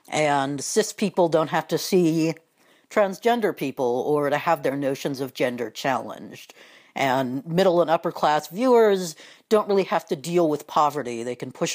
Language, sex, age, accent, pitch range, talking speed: English, female, 60-79, American, 150-195 Hz, 170 wpm